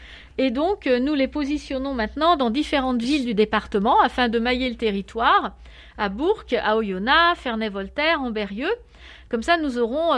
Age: 40-59